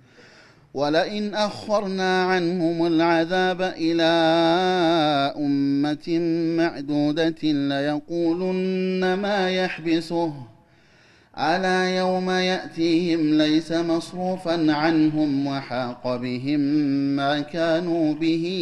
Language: Amharic